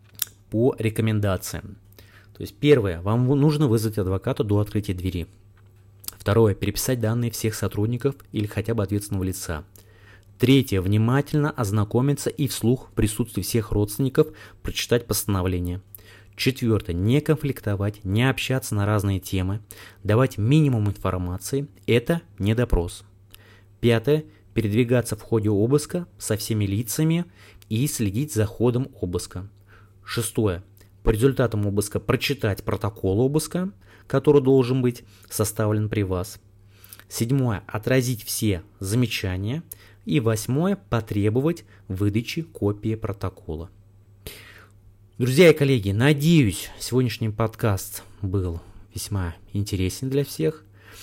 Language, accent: Russian, native